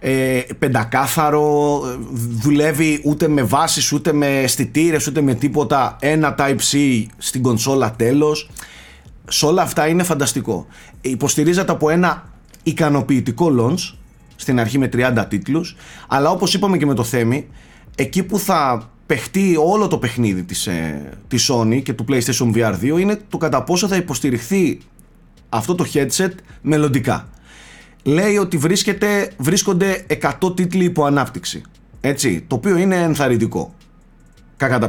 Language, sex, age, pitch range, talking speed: Greek, male, 30-49, 130-170 Hz, 130 wpm